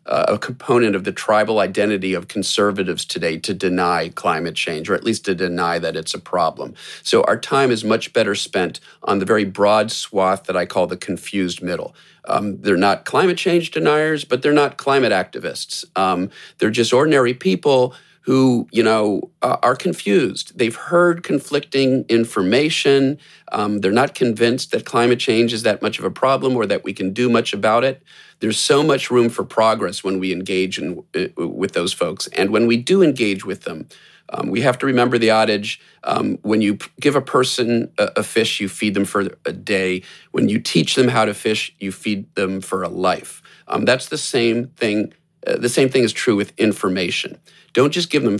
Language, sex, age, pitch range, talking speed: English, male, 40-59, 100-130 Hz, 195 wpm